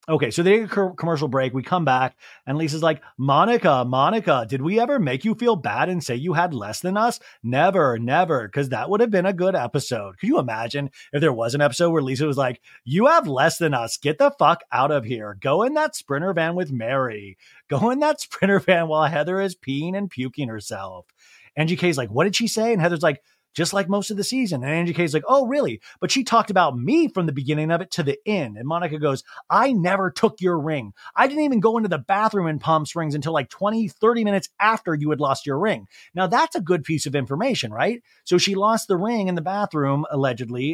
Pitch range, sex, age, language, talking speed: 140-195 Hz, male, 30-49, English, 235 wpm